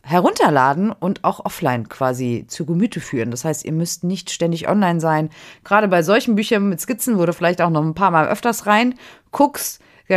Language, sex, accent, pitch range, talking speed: German, female, German, 150-205 Hz, 195 wpm